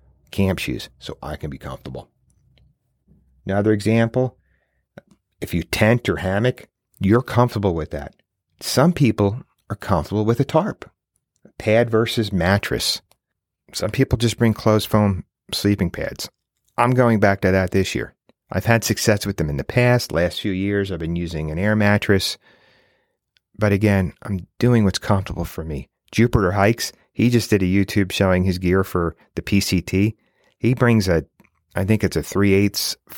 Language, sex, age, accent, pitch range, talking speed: English, male, 40-59, American, 90-115 Hz, 160 wpm